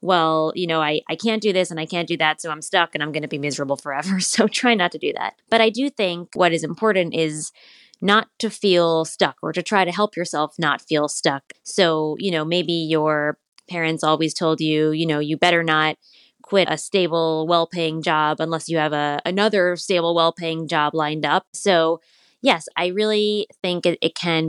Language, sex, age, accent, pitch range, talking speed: English, female, 20-39, American, 155-185 Hz, 215 wpm